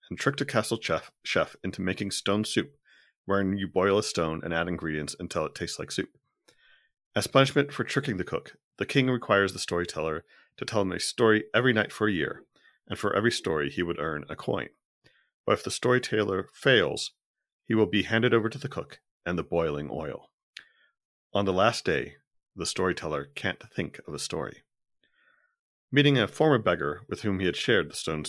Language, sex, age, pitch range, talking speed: English, male, 40-59, 90-115 Hz, 195 wpm